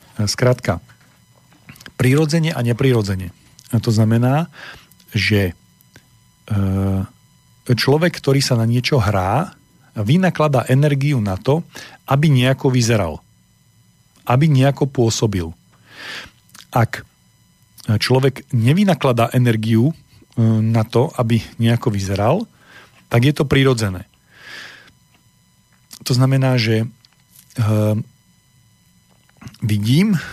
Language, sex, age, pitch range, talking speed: Slovak, male, 40-59, 115-140 Hz, 80 wpm